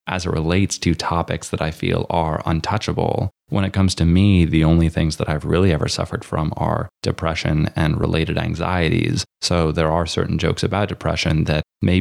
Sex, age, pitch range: male, 20-39, 75-90 Hz